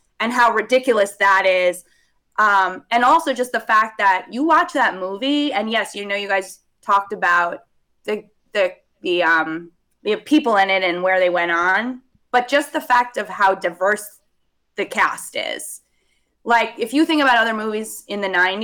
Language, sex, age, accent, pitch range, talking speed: English, female, 20-39, American, 185-225 Hz, 180 wpm